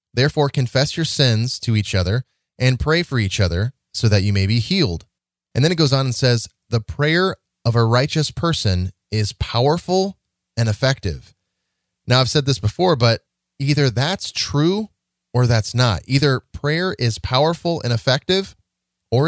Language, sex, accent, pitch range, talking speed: English, male, American, 110-145 Hz, 170 wpm